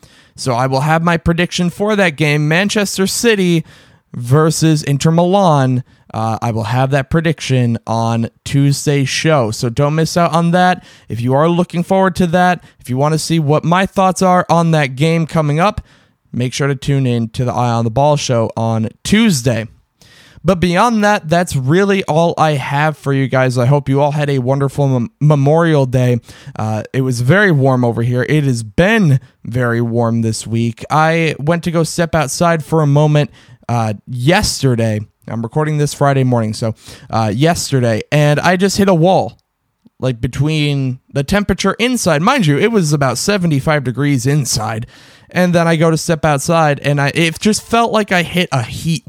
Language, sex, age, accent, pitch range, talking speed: English, male, 20-39, American, 130-170 Hz, 190 wpm